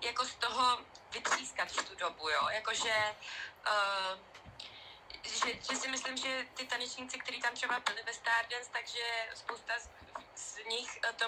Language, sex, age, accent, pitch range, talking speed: Czech, female, 20-39, native, 210-240 Hz, 155 wpm